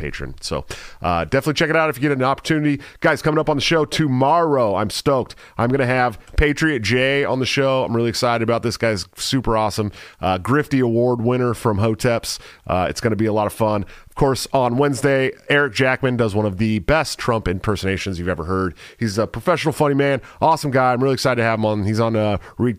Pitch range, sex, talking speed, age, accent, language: 105-135 Hz, male, 225 wpm, 40-59, American, English